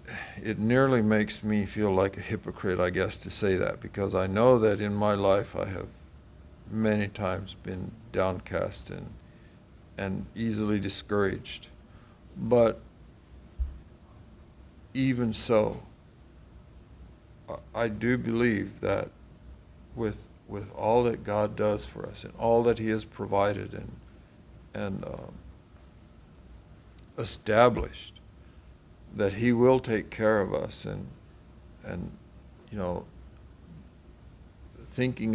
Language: English